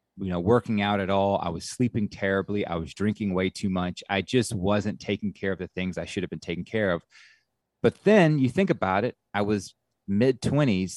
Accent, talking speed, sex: American, 225 wpm, male